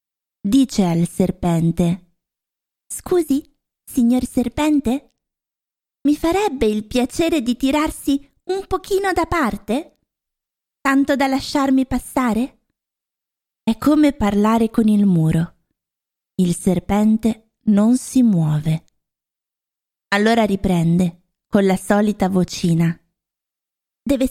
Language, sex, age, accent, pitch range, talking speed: Italian, female, 20-39, native, 185-265 Hz, 95 wpm